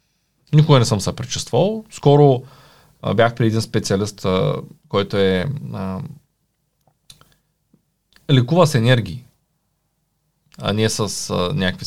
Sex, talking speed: male, 105 wpm